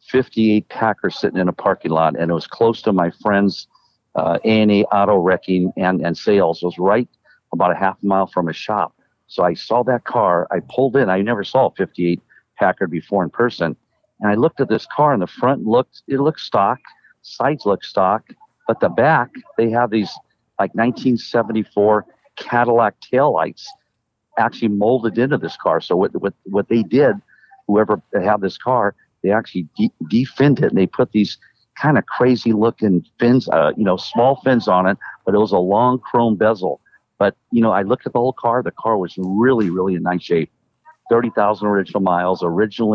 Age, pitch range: 50-69, 95-120 Hz